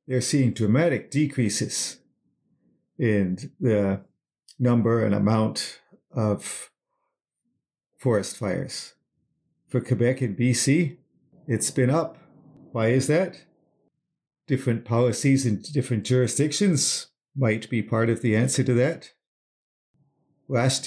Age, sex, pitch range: 50-69, male, 115-150 Hz